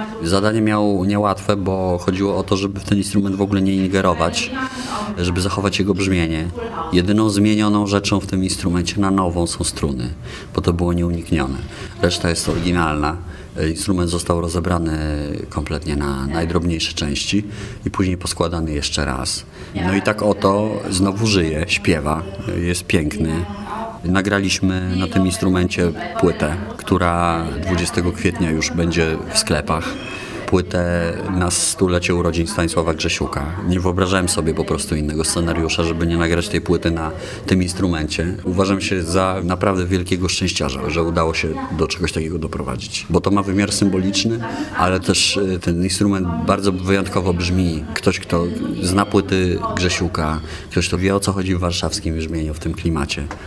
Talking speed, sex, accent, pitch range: 150 wpm, male, native, 85-100 Hz